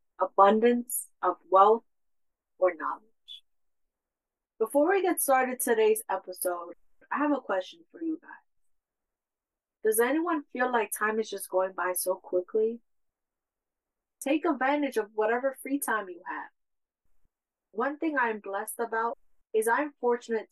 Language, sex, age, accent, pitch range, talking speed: English, female, 30-49, American, 200-275 Hz, 130 wpm